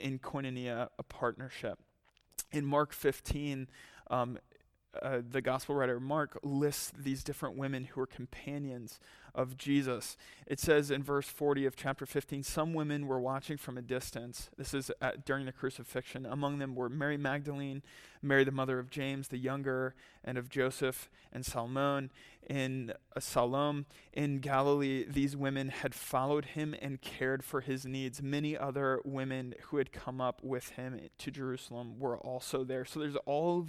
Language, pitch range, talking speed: English, 130-145 Hz, 160 wpm